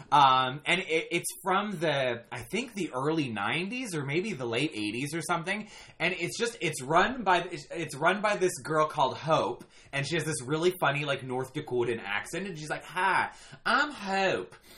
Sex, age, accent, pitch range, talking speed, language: male, 20-39, American, 125-175 Hz, 185 wpm, English